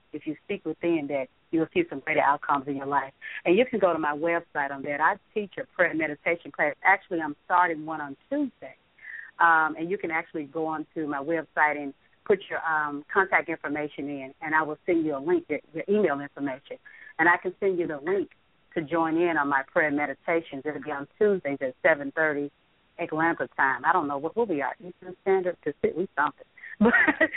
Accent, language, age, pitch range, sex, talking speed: American, English, 40-59, 150-180 Hz, female, 215 wpm